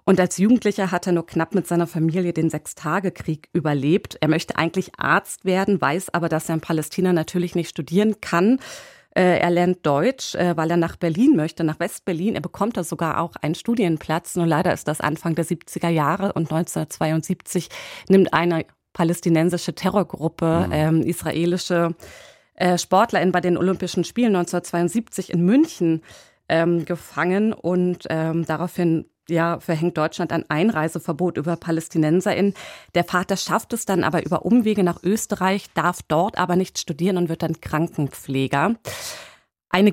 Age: 30-49